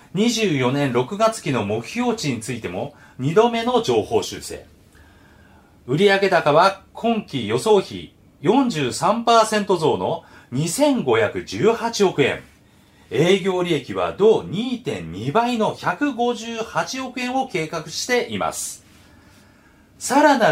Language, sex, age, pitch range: Japanese, male, 40-59, 150-230 Hz